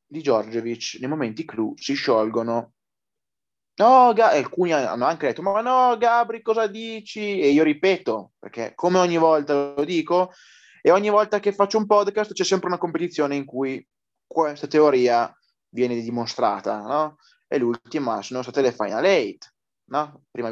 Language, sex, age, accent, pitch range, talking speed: Italian, male, 20-39, native, 125-170 Hz, 155 wpm